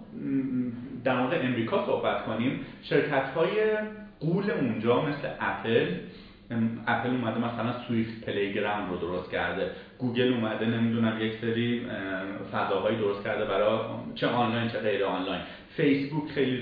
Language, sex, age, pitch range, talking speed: Persian, male, 30-49, 115-195 Hz, 125 wpm